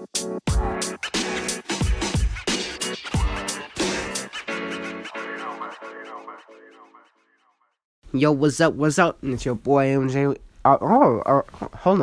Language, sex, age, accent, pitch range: English, male, 20-39, American, 110-135 Hz